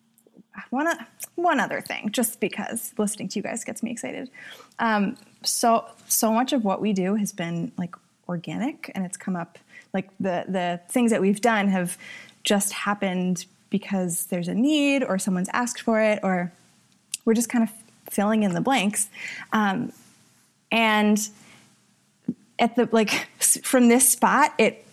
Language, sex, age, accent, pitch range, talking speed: English, female, 20-39, American, 190-230 Hz, 160 wpm